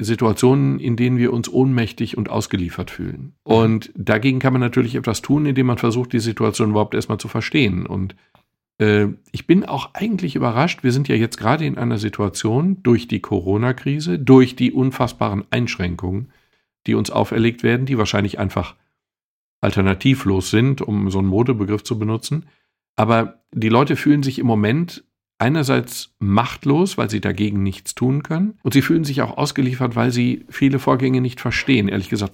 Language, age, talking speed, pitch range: German, 50-69, 170 wpm, 105-130 Hz